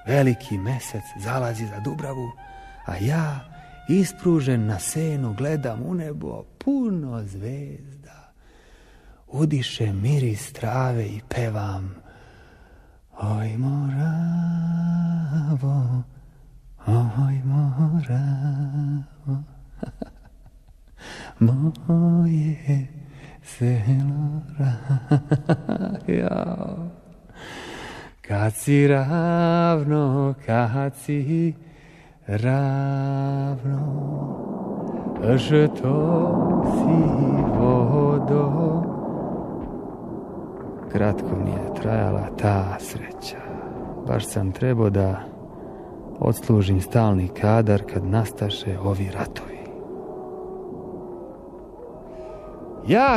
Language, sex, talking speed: Croatian, male, 60 wpm